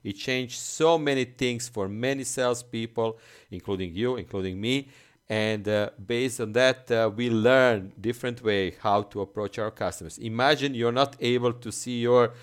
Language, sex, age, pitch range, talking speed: English, male, 40-59, 100-125 Hz, 165 wpm